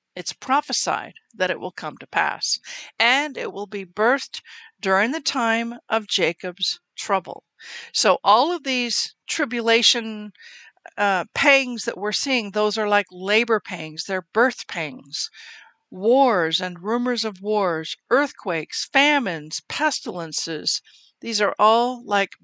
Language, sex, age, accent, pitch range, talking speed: English, female, 60-79, American, 190-245 Hz, 130 wpm